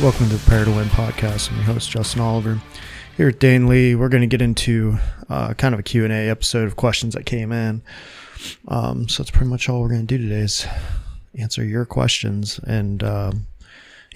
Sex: male